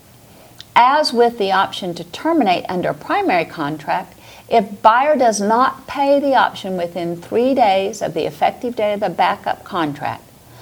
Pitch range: 160-230 Hz